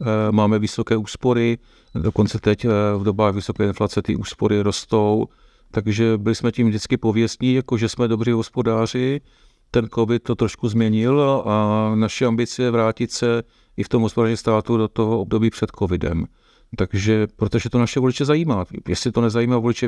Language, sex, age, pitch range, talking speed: Czech, male, 50-69, 105-120 Hz, 165 wpm